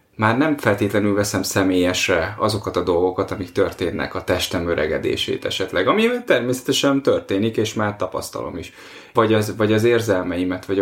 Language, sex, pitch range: Hungarian, male, 100-120 Hz